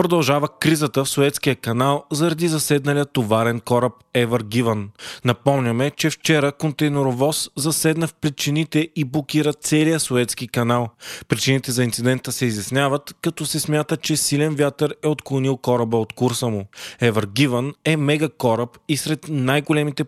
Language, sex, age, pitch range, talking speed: Bulgarian, male, 20-39, 125-150 Hz, 145 wpm